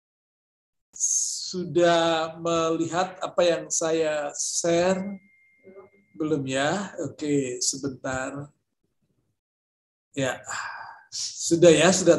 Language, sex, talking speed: Indonesian, male, 70 wpm